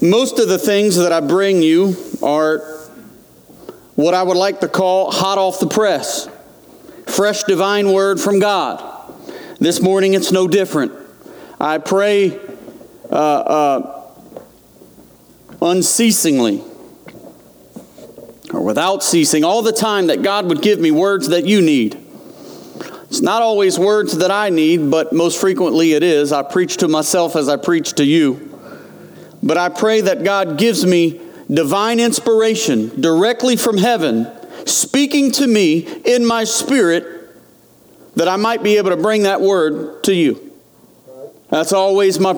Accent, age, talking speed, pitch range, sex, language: American, 40-59, 145 wpm, 180-225 Hz, male, English